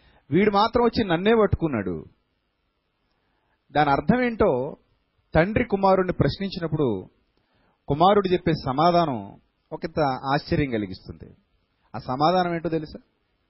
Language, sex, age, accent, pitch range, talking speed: Telugu, male, 30-49, native, 110-185 Hz, 95 wpm